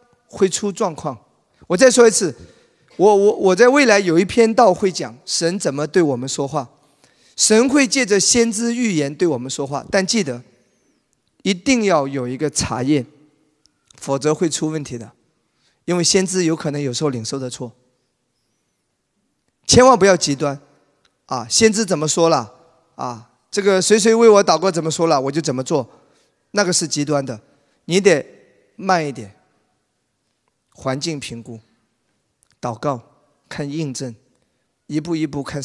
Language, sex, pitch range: Chinese, male, 130-190 Hz